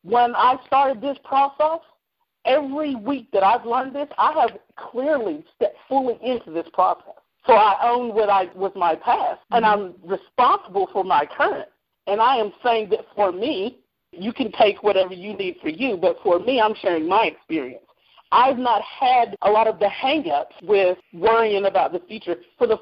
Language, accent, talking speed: English, American, 185 wpm